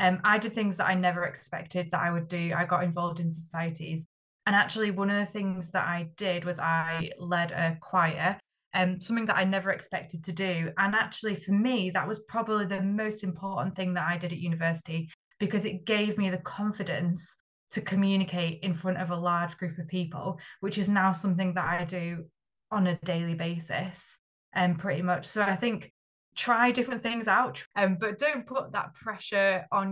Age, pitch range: 20-39, 175-200 Hz